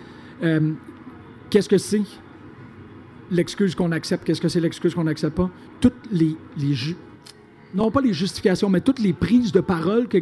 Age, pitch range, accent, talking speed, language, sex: 50-69, 170-215 Hz, Canadian, 170 wpm, French, male